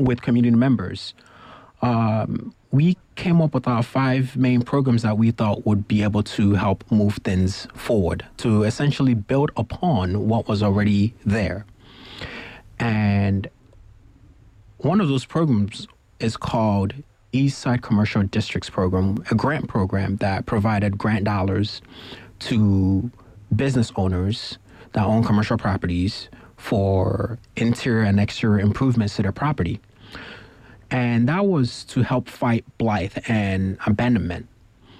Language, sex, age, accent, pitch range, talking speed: English, male, 30-49, American, 100-120 Hz, 125 wpm